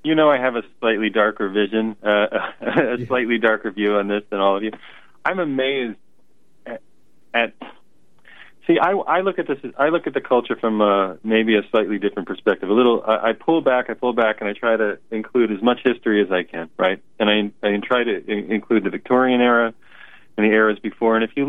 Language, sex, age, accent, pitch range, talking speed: English, male, 30-49, American, 105-125 Hz, 220 wpm